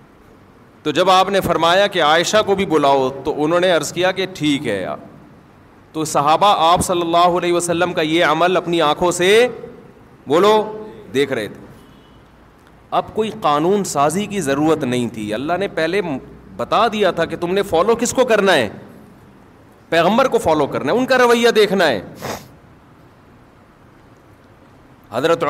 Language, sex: Urdu, male